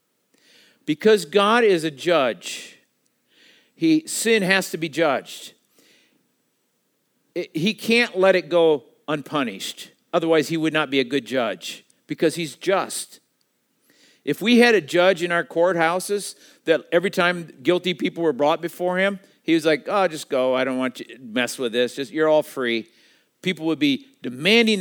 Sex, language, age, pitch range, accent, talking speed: male, English, 50-69, 135-190 Hz, American, 165 wpm